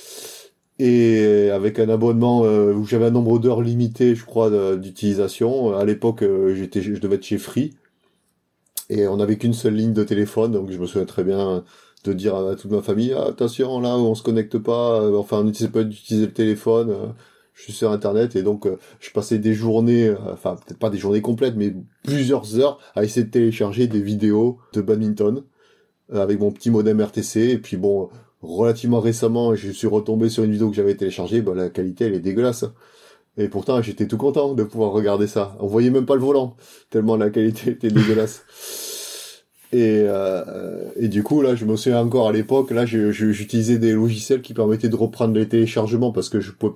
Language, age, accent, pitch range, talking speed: French, 30-49, French, 105-115 Hz, 205 wpm